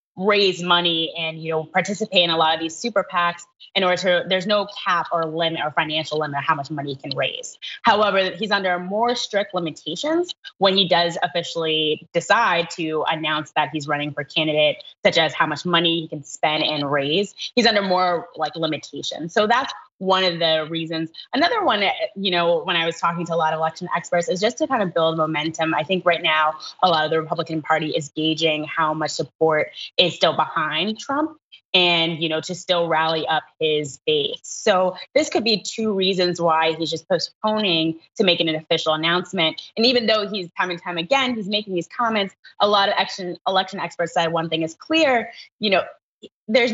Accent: American